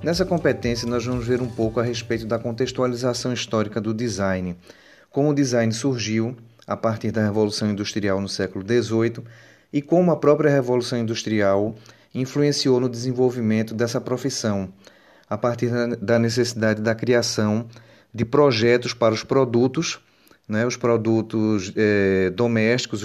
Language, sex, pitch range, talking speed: Portuguese, male, 110-125 Hz, 140 wpm